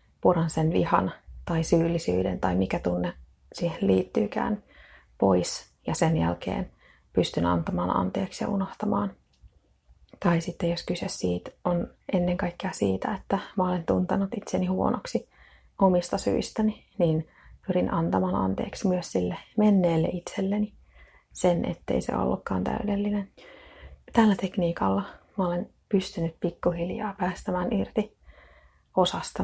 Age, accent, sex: 30-49, native, female